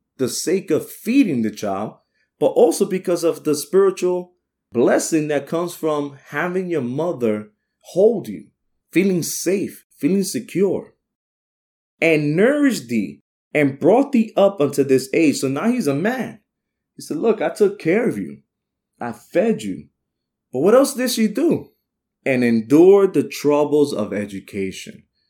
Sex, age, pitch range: male, 30-49, 120-190 Hz